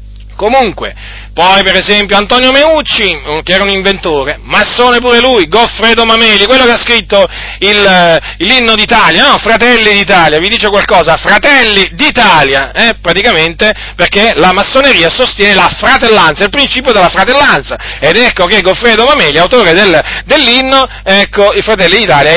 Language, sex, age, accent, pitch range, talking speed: Italian, male, 40-59, native, 150-210 Hz, 145 wpm